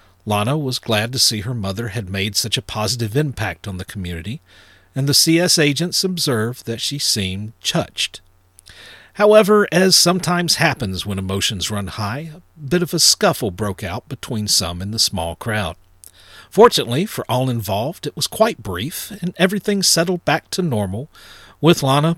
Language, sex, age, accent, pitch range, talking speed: English, male, 50-69, American, 95-145 Hz, 170 wpm